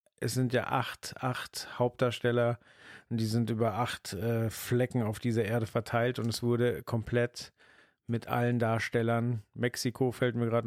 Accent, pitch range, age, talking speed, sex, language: German, 110-125 Hz, 40-59, 155 wpm, male, German